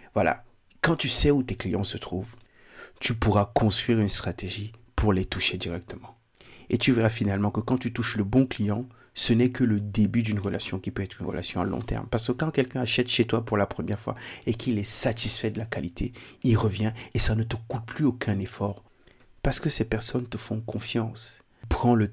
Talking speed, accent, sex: 220 wpm, French, male